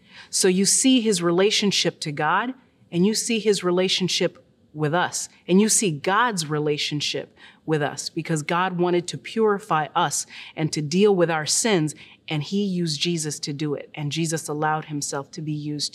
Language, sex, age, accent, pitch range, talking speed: English, female, 30-49, American, 160-215 Hz, 175 wpm